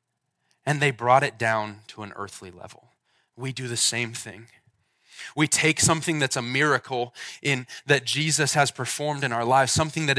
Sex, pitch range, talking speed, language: male, 110-140 Hz, 175 wpm, English